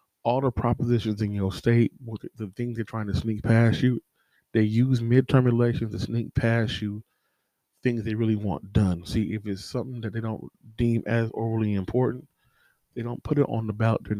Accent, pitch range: American, 100-120 Hz